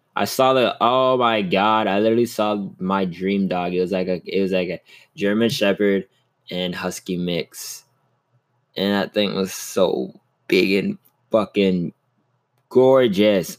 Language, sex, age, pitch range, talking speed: English, male, 20-39, 95-130 Hz, 150 wpm